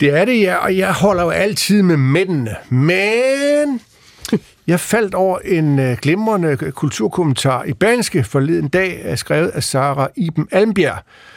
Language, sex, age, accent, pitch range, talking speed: Danish, male, 60-79, native, 130-180 Hz, 145 wpm